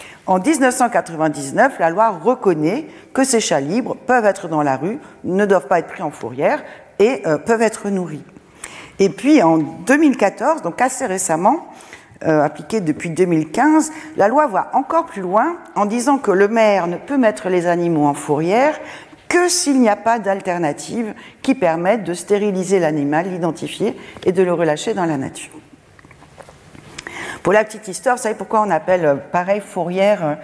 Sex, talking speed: female, 165 wpm